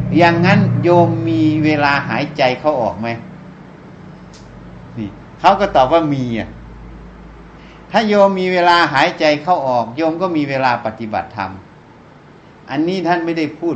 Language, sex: Thai, male